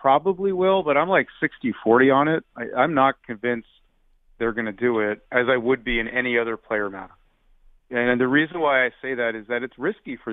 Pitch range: 115-135 Hz